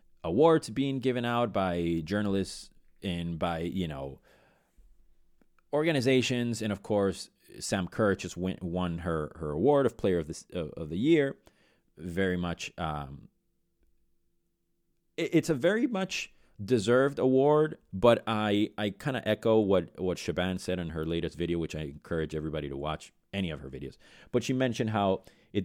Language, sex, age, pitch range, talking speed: English, male, 30-49, 85-115 Hz, 160 wpm